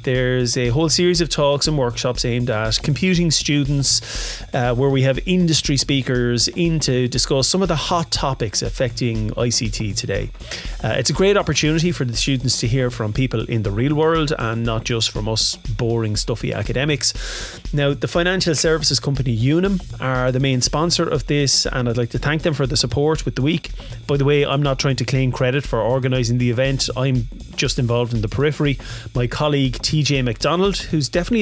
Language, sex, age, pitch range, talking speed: English, male, 30-49, 120-155 Hz, 195 wpm